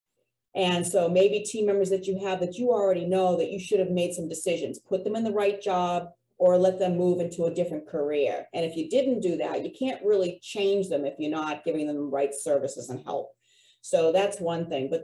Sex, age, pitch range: female, 40-59, 170-210 Hz